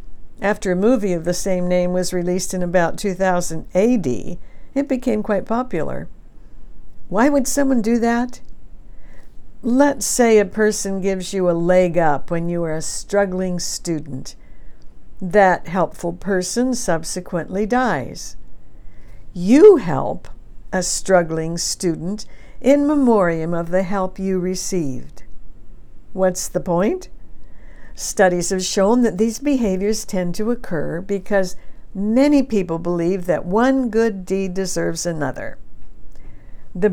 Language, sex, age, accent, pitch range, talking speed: English, female, 60-79, American, 175-230 Hz, 125 wpm